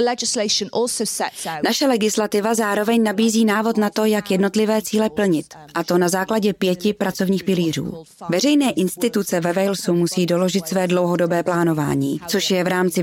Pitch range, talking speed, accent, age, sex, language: 175-205 Hz, 145 wpm, native, 30-49, female, Czech